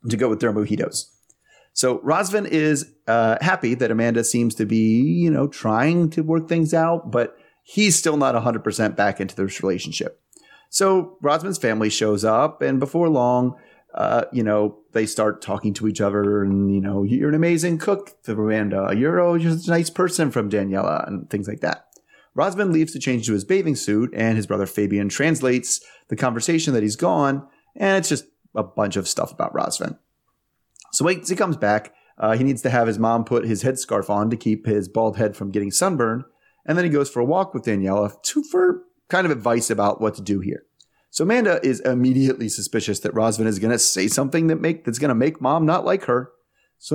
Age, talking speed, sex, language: 30-49, 205 wpm, male, English